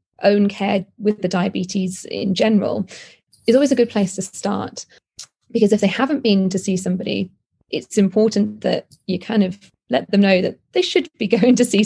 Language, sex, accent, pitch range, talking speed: English, female, British, 195-220 Hz, 190 wpm